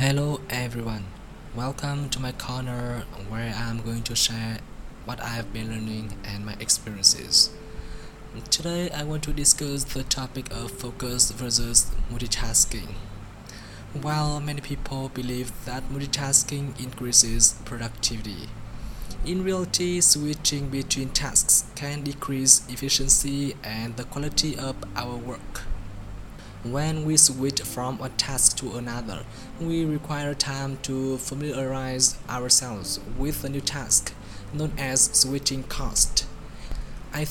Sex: male